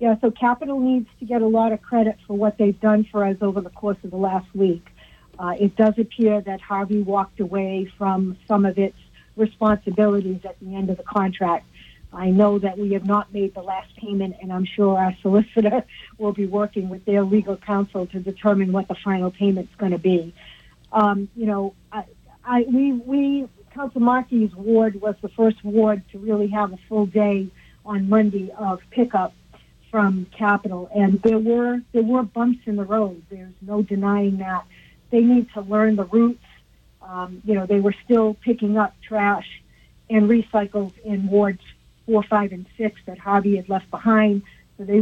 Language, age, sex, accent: English, 60-79, female, American